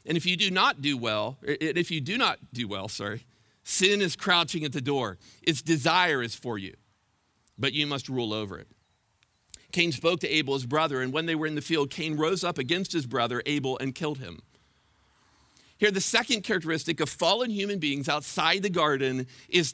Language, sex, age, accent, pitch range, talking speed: English, male, 50-69, American, 145-220 Hz, 200 wpm